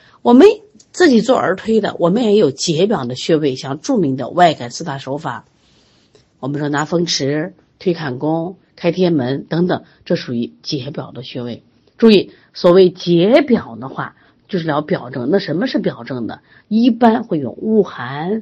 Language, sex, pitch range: Chinese, female, 145-230 Hz